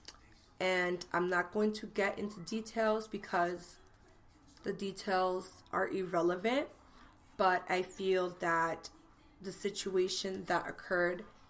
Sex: female